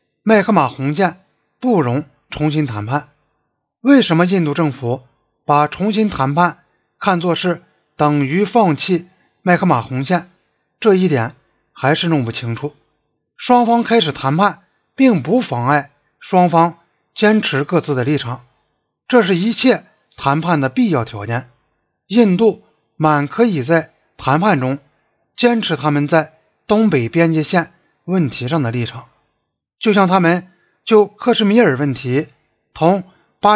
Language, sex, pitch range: Chinese, male, 140-200 Hz